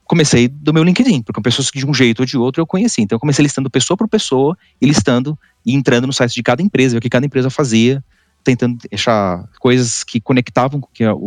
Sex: male